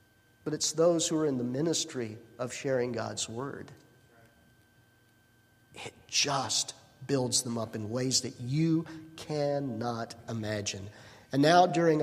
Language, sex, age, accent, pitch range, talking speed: English, male, 50-69, American, 120-165 Hz, 130 wpm